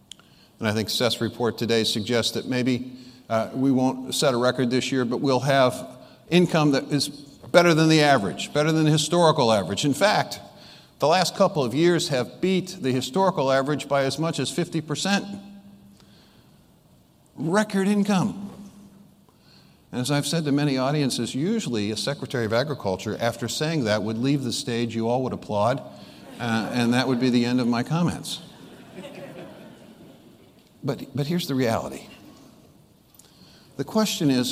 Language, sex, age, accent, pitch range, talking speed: English, male, 50-69, American, 120-160 Hz, 160 wpm